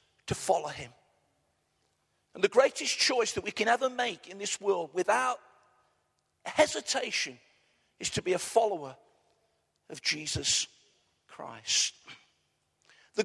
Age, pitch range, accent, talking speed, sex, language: 50-69, 185-255 Hz, British, 120 wpm, male, English